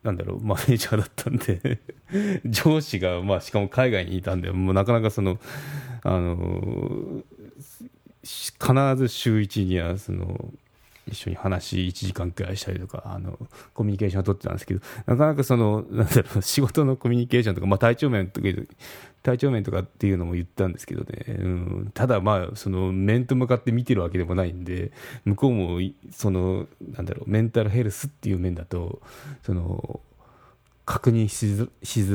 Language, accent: Japanese, native